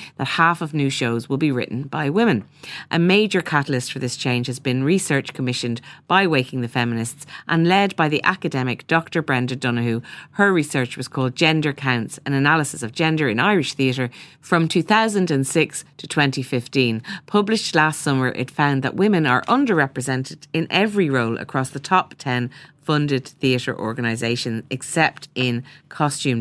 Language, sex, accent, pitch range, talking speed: English, female, Irish, 125-155 Hz, 160 wpm